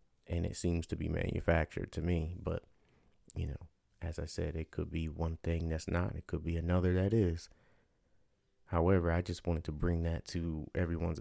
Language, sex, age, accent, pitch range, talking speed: English, male, 30-49, American, 80-95 Hz, 195 wpm